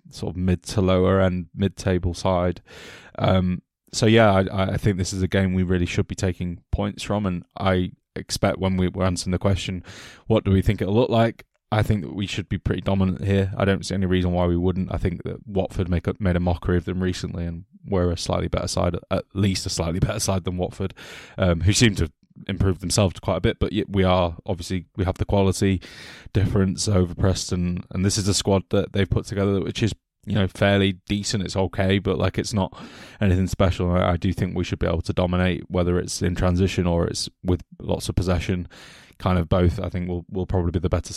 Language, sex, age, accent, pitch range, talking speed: English, male, 20-39, British, 90-100 Hz, 230 wpm